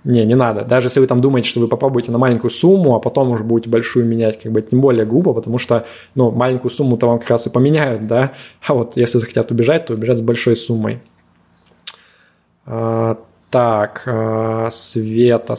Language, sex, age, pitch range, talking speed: Russian, male, 20-39, 115-125 Hz, 195 wpm